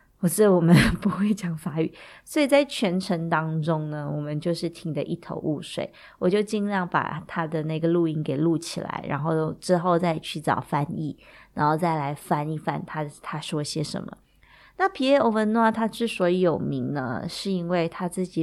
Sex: female